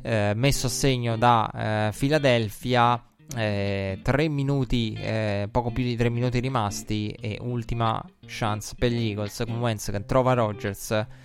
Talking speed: 150 wpm